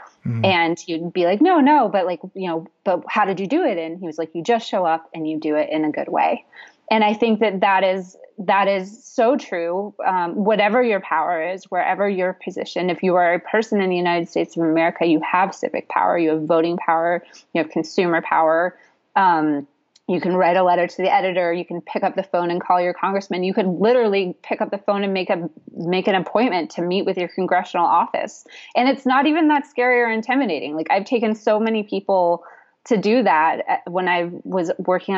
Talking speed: 225 wpm